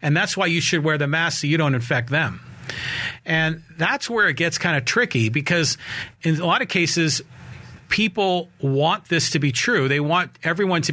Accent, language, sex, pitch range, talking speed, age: American, English, male, 130-165 Hz, 205 wpm, 40-59